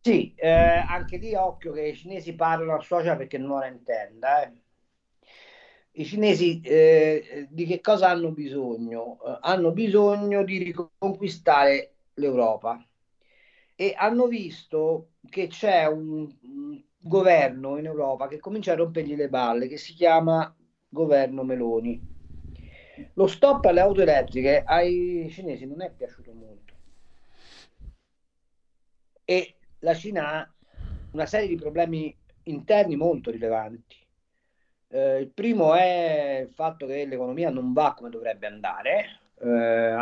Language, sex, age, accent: Italian, male, 40-59, native